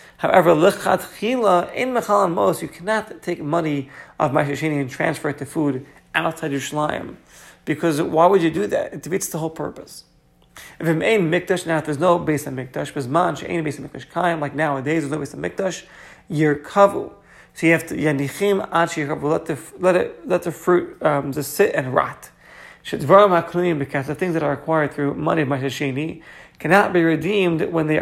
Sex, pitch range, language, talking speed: male, 145-180 Hz, English, 195 wpm